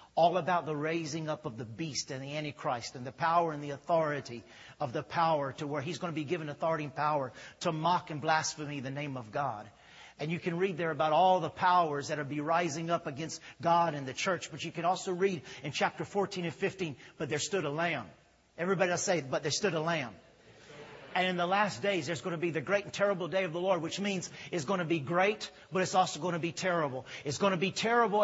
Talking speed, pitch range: 245 wpm, 160-200 Hz